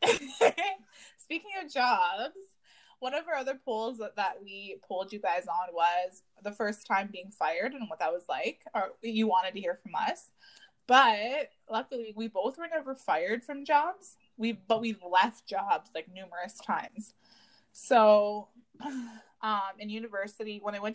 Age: 20-39